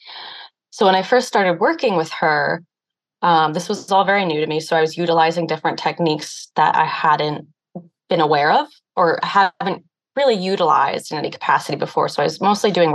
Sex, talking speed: female, 190 wpm